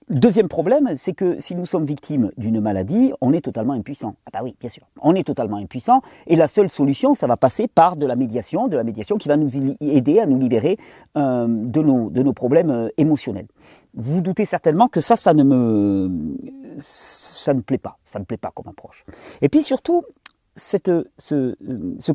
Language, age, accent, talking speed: French, 40-59, French, 200 wpm